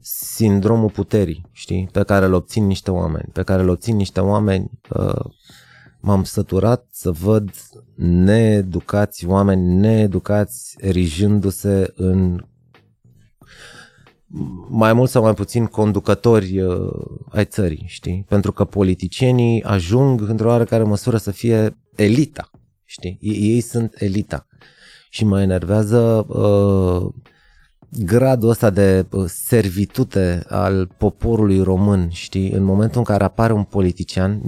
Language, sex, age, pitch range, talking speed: Romanian, male, 30-49, 95-115 Hz, 125 wpm